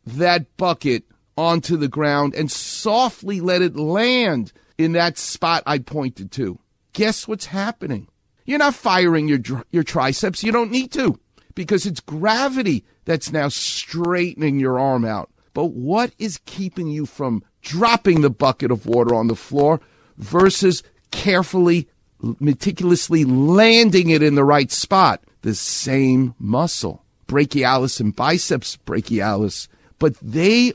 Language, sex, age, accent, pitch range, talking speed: English, male, 50-69, American, 120-175 Hz, 140 wpm